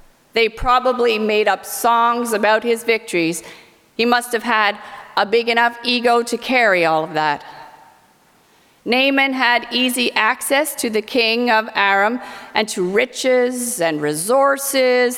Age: 50-69